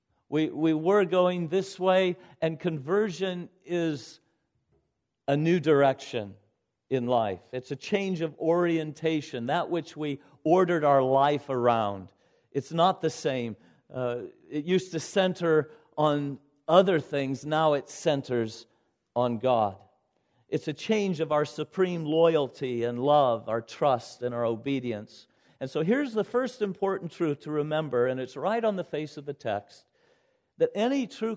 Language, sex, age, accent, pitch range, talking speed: English, male, 50-69, American, 130-185 Hz, 150 wpm